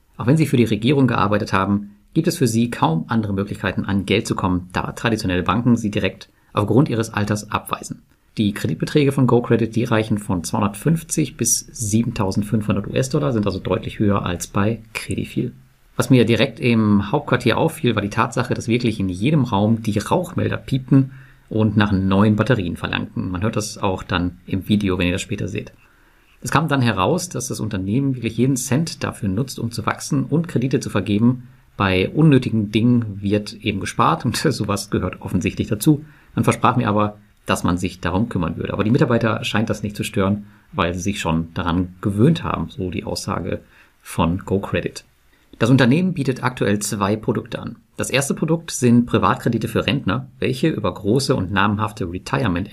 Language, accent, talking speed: German, German, 180 wpm